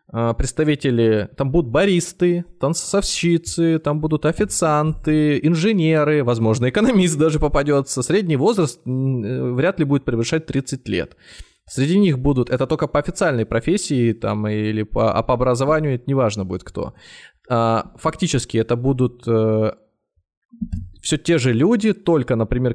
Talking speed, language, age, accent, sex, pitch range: 130 wpm, Russian, 20-39, native, male, 120-160 Hz